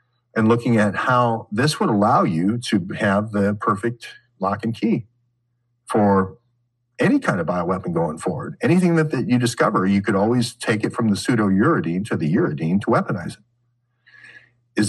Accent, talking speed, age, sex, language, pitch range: American, 175 wpm, 50-69, male, English, 105-130 Hz